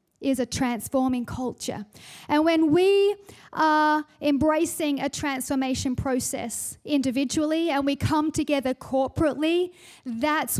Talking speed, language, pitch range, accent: 110 wpm, English, 240-305 Hz, Australian